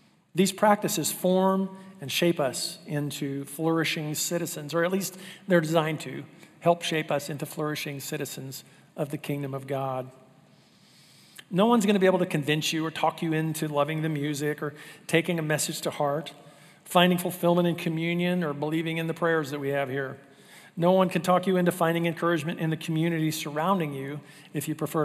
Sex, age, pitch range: male, 50-69, 150-185 Hz